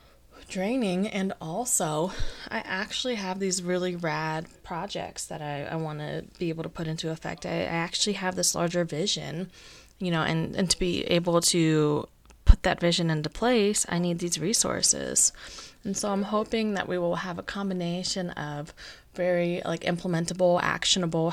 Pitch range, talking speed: 165-190 Hz, 165 wpm